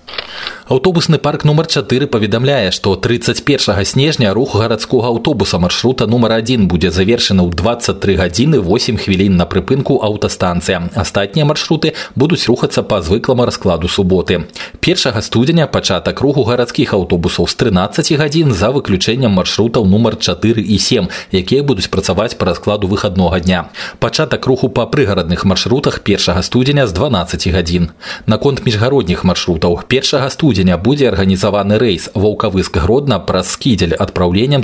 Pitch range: 90-125 Hz